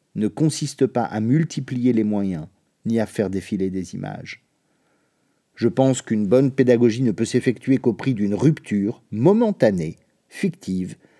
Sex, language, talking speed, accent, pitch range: male, French, 145 wpm, French, 105-135 Hz